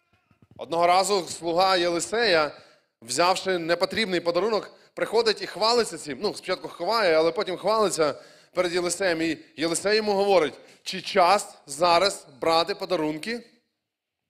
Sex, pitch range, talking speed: male, 155-190 Hz, 120 wpm